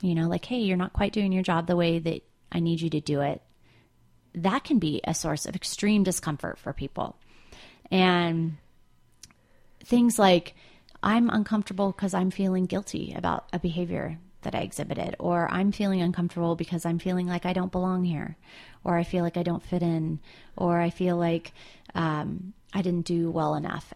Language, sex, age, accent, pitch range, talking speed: English, female, 30-49, American, 170-200 Hz, 185 wpm